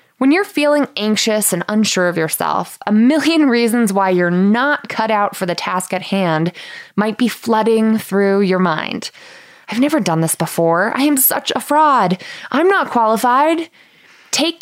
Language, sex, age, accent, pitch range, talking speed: English, female, 20-39, American, 200-280 Hz, 170 wpm